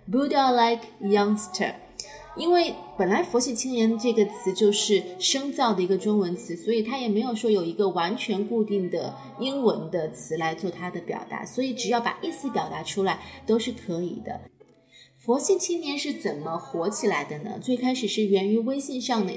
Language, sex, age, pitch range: Chinese, female, 20-39, 195-245 Hz